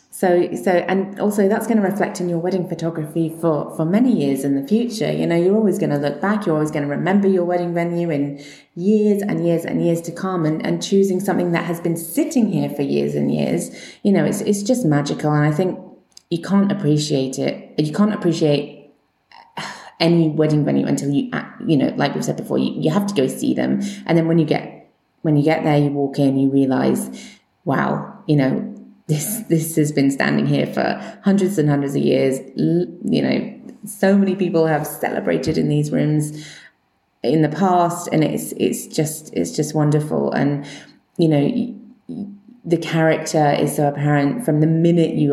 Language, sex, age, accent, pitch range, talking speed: English, female, 20-39, British, 145-195 Hz, 200 wpm